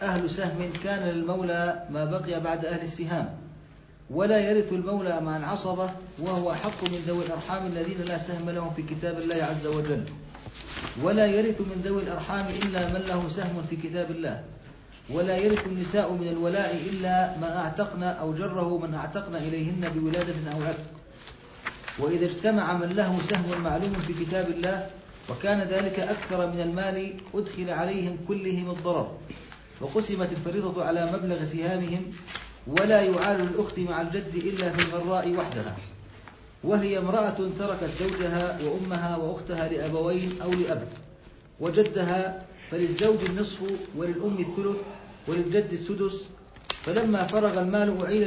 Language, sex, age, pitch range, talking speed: Arabic, male, 40-59, 170-195 Hz, 135 wpm